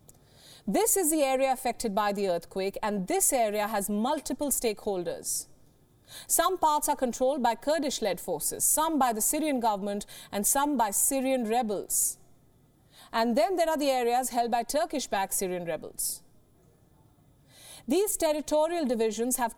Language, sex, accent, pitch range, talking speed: English, female, Indian, 200-275 Hz, 140 wpm